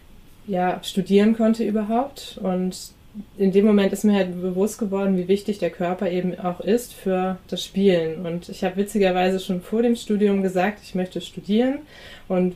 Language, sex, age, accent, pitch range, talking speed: German, female, 20-39, German, 180-200 Hz, 160 wpm